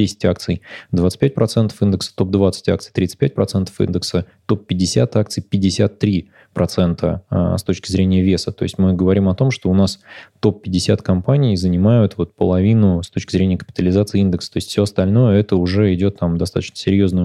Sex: male